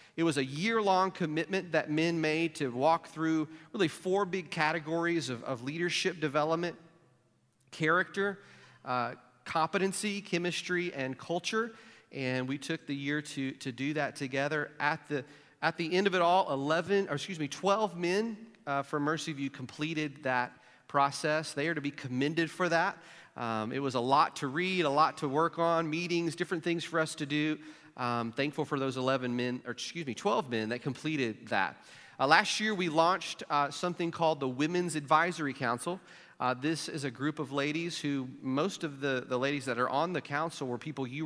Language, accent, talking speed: English, American, 185 wpm